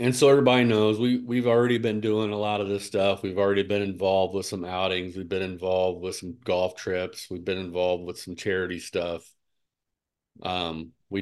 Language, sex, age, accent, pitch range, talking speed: English, male, 40-59, American, 95-105 Hz, 200 wpm